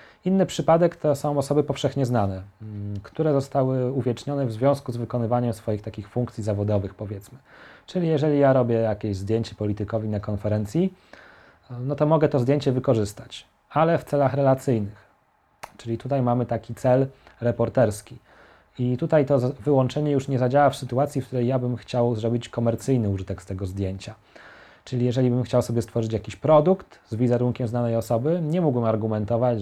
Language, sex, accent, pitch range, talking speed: Polish, male, native, 105-135 Hz, 160 wpm